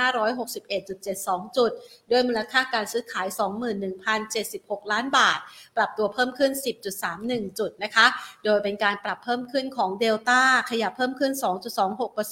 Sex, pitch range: female, 210-255 Hz